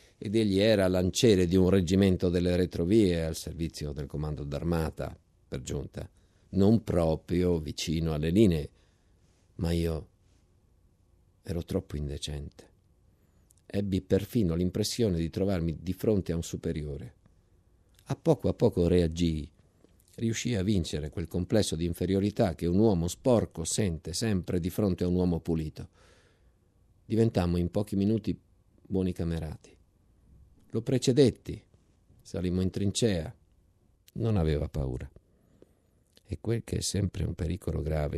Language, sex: Italian, male